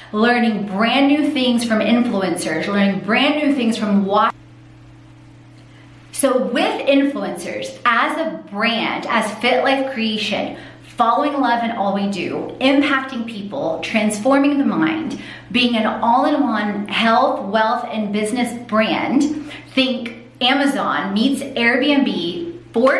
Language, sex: English, female